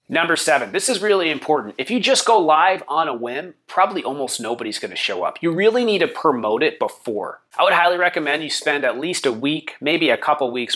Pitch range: 135-175 Hz